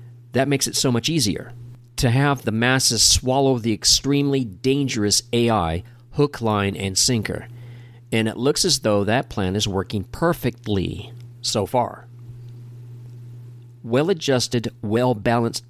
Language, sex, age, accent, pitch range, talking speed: English, male, 40-59, American, 110-125 Hz, 125 wpm